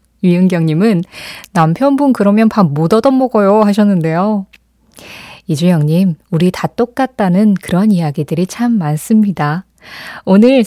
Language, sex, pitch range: Korean, female, 175-250 Hz